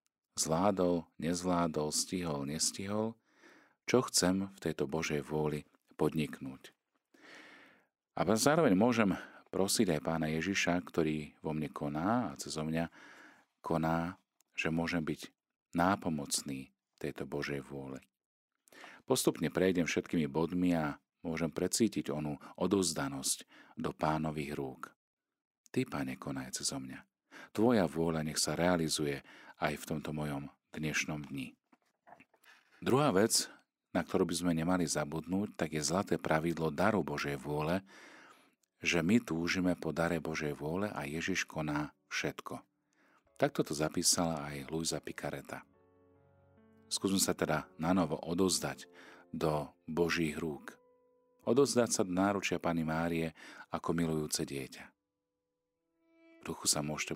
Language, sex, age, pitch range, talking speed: Slovak, male, 40-59, 75-90 Hz, 120 wpm